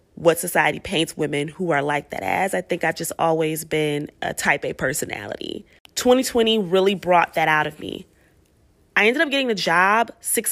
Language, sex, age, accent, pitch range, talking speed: English, female, 20-39, American, 145-200 Hz, 190 wpm